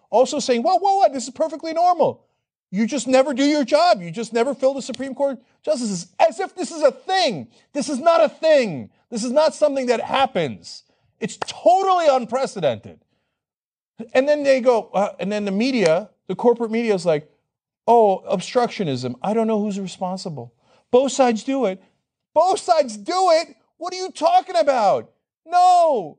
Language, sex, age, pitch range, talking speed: English, male, 40-59, 195-300 Hz, 180 wpm